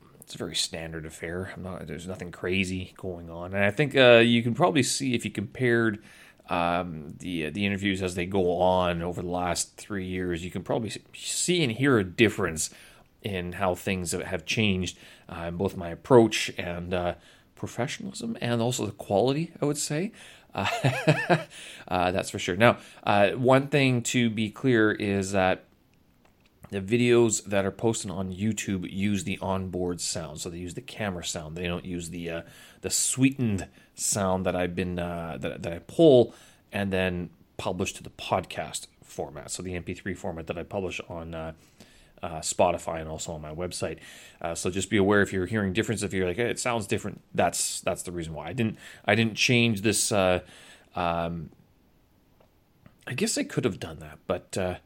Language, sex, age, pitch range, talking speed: English, male, 30-49, 90-115 Hz, 190 wpm